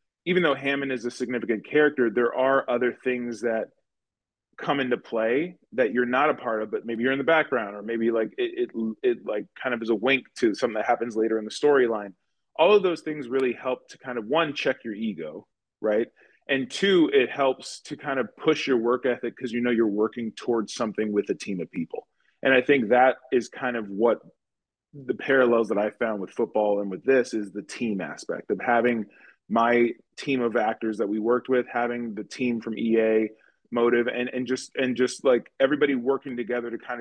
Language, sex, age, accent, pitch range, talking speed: English, male, 20-39, American, 115-135 Hz, 215 wpm